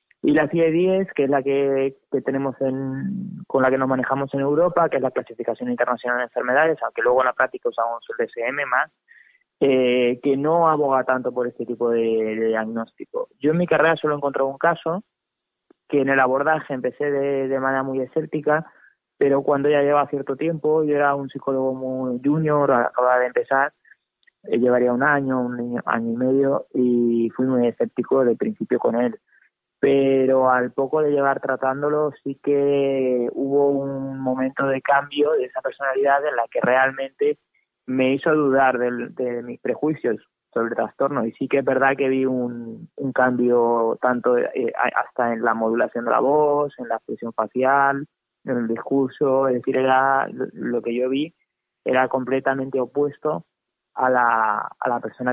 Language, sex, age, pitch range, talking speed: Spanish, male, 20-39, 125-145 Hz, 180 wpm